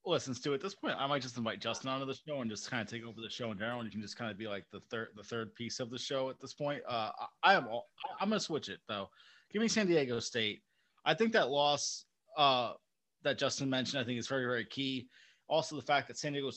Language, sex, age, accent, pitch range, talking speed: English, male, 30-49, American, 120-145 Hz, 285 wpm